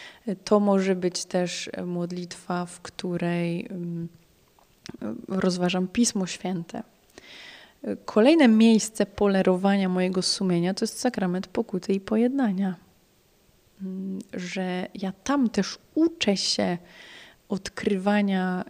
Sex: female